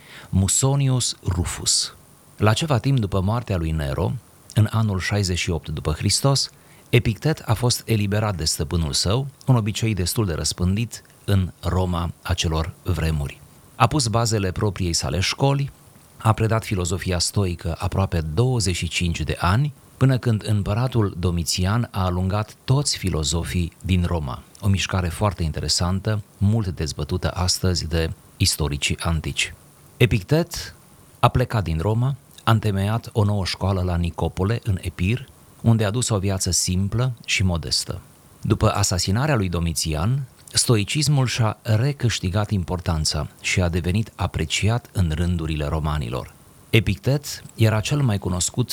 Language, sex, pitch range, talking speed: Romanian, male, 85-115 Hz, 130 wpm